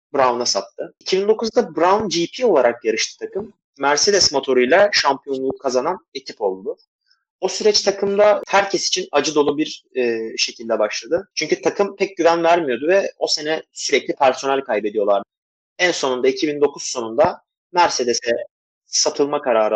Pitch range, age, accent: 130-190 Hz, 30-49, native